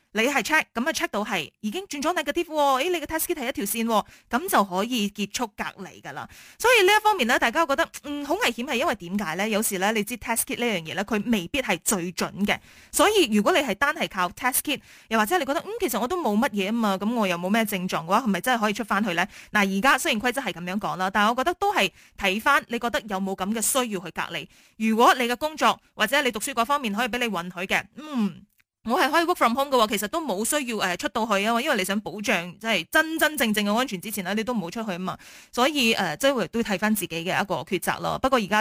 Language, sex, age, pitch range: Chinese, female, 20-39, 195-265 Hz